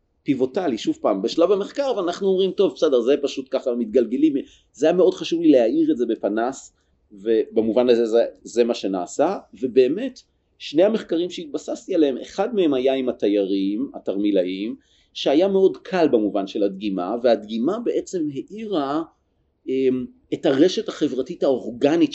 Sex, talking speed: male, 140 wpm